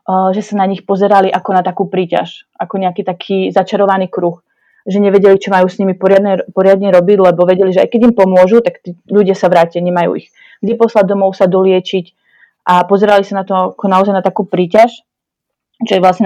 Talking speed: 200 wpm